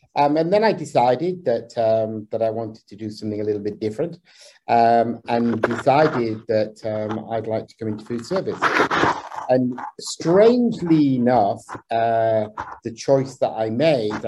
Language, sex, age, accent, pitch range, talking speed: English, male, 50-69, British, 110-125 Hz, 160 wpm